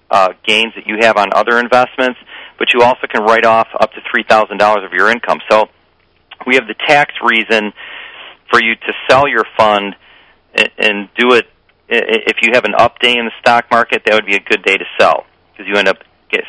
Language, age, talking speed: English, 40-59, 215 wpm